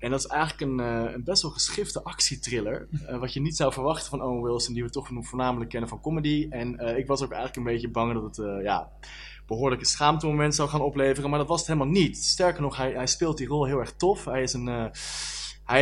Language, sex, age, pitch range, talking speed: Dutch, male, 20-39, 120-150 Hz, 235 wpm